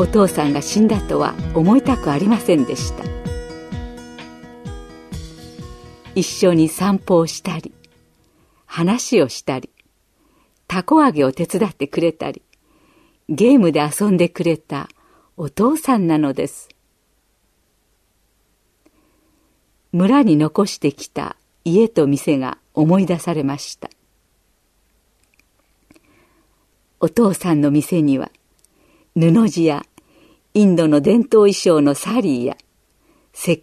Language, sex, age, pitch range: Japanese, female, 50-69, 145-225 Hz